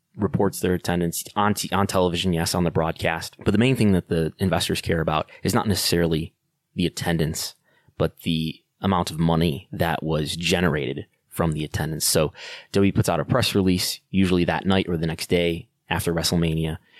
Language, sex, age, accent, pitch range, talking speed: English, male, 20-39, American, 85-100 Hz, 185 wpm